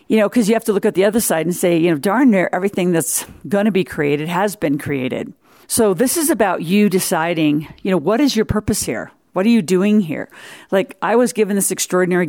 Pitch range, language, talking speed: 165-205 Hz, English, 245 wpm